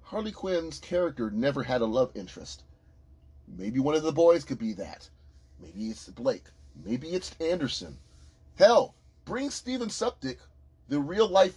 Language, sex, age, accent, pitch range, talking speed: English, male, 30-49, American, 90-155 Hz, 145 wpm